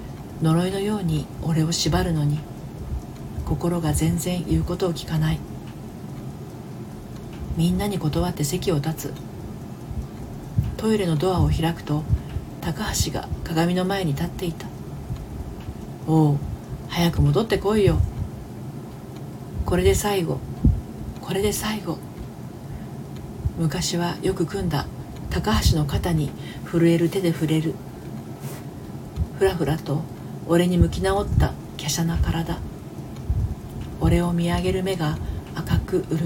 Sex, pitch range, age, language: female, 150-180 Hz, 40-59, Japanese